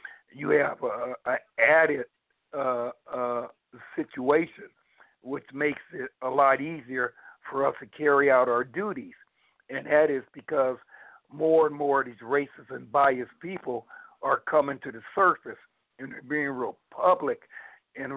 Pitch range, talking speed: 130-160 Hz, 145 wpm